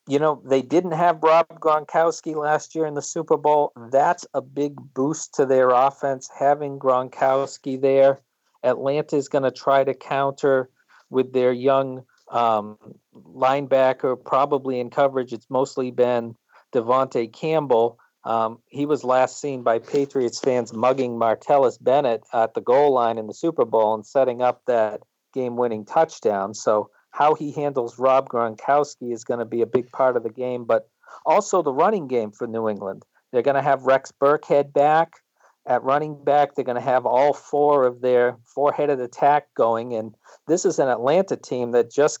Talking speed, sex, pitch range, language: 170 wpm, male, 120-145 Hz, English